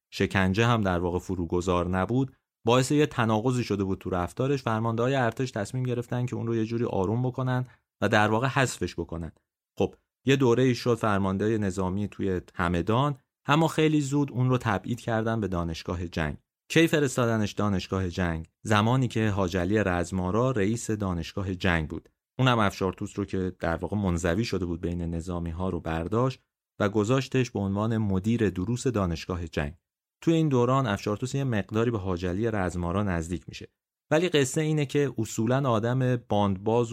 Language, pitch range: Persian, 90-120 Hz